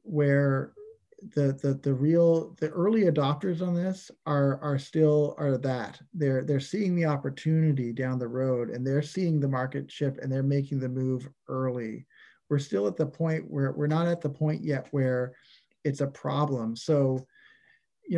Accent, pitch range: American, 130-160 Hz